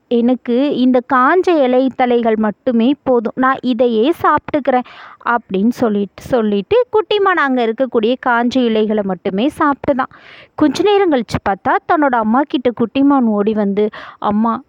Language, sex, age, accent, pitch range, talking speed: English, female, 20-39, Indian, 230-320 Hz, 125 wpm